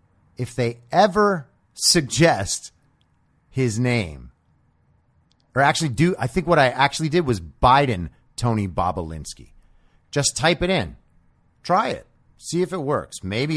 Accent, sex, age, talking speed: American, male, 30-49, 135 wpm